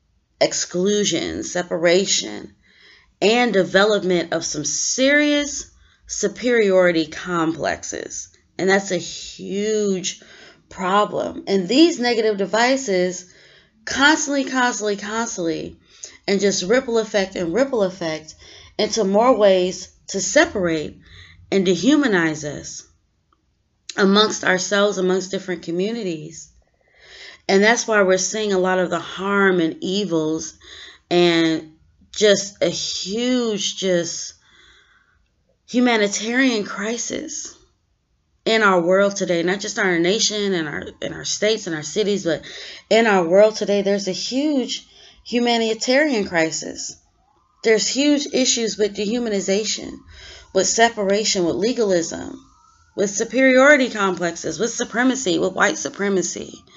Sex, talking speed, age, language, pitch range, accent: female, 110 wpm, 30-49, English, 180-230 Hz, American